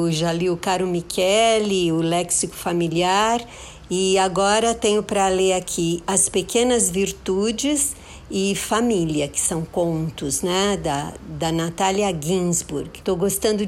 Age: 50-69